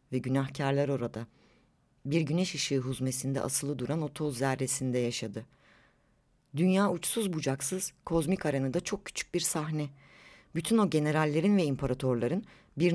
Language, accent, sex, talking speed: Turkish, native, female, 135 wpm